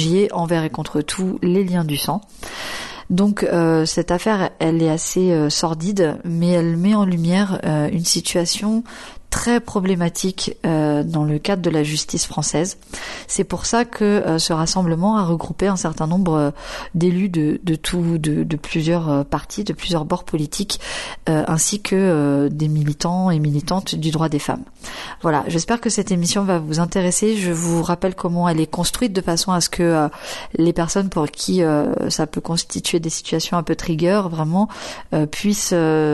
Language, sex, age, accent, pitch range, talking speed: French, female, 40-59, French, 155-190 Hz, 185 wpm